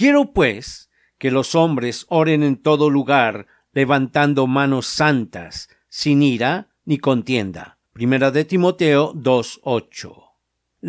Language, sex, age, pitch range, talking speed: Spanish, male, 50-69, 125-150 Hz, 110 wpm